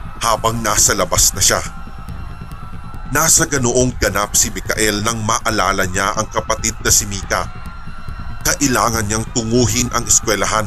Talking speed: 130 wpm